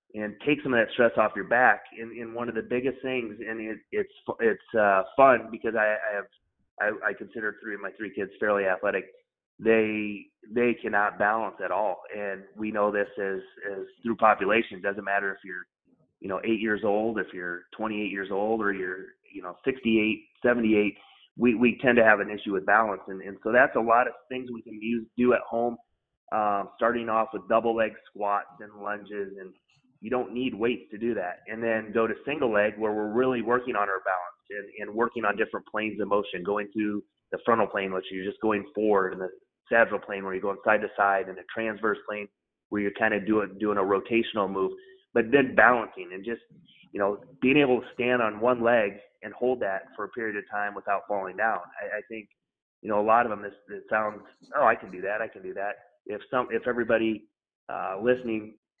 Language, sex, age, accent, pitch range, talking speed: English, male, 30-49, American, 100-120 Hz, 225 wpm